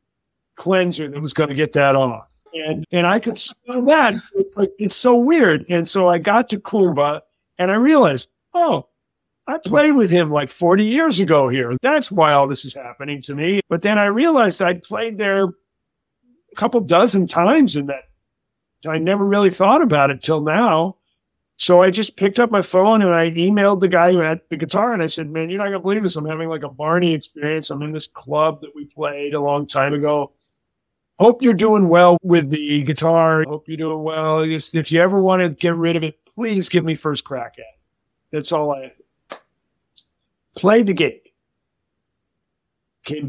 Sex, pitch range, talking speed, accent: male, 150-195 Hz, 200 wpm, American